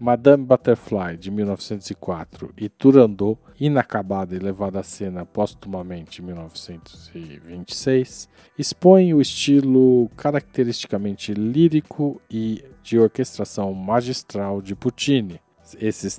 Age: 40-59